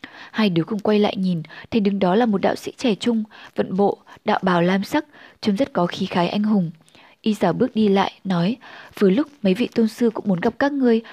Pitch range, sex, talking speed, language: 185-230 Hz, female, 245 wpm, Vietnamese